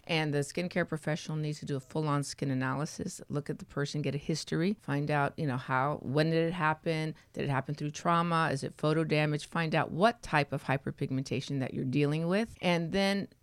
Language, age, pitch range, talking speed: English, 40-59, 145-175 Hz, 215 wpm